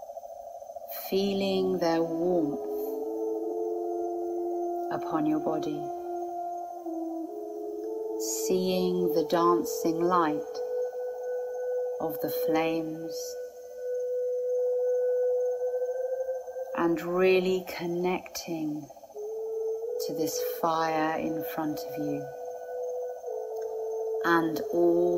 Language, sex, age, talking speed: English, female, 40-59, 60 wpm